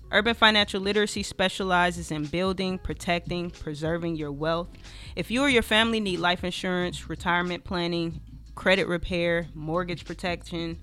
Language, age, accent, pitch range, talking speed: English, 20-39, American, 170-205 Hz, 135 wpm